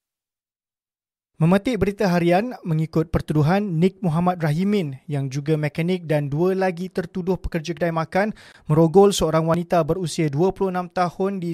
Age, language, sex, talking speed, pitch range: 20-39, Malay, male, 130 wpm, 160-185 Hz